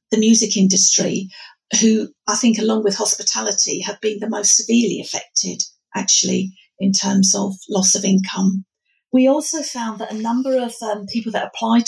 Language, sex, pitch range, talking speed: English, female, 200-235 Hz, 165 wpm